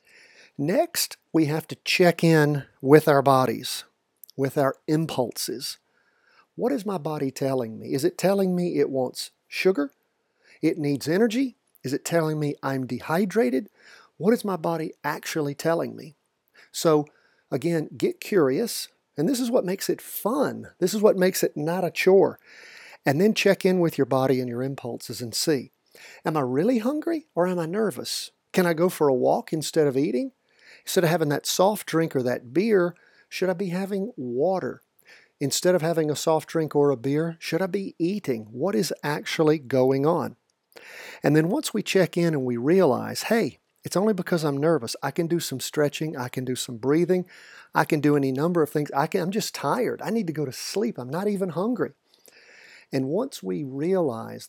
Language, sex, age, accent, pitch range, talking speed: English, male, 50-69, American, 140-190 Hz, 185 wpm